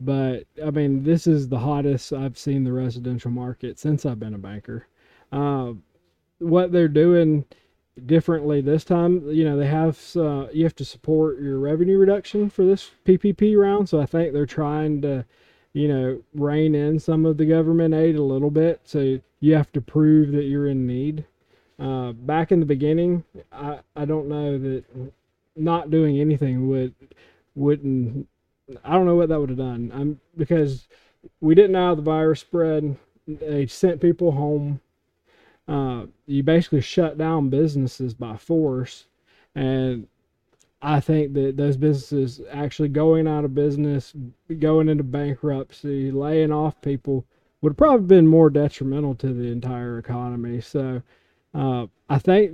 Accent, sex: American, male